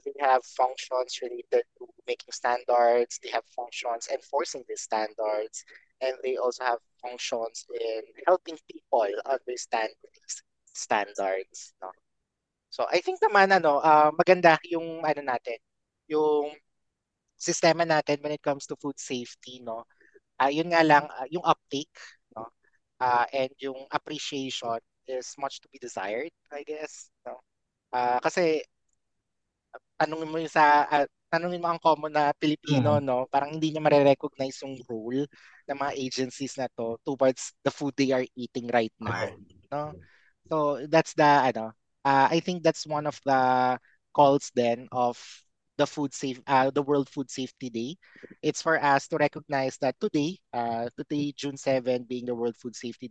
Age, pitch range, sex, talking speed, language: 20-39, 125-155 Hz, male, 155 wpm, English